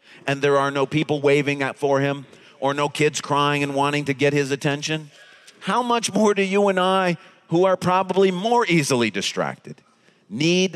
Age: 40-59